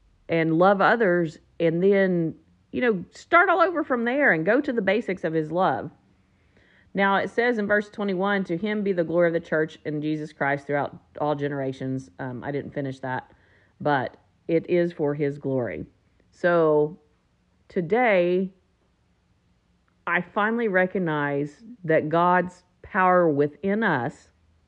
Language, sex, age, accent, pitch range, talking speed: English, female, 40-59, American, 145-195 Hz, 150 wpm